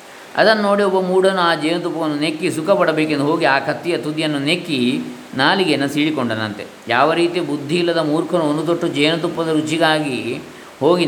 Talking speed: 135 wpm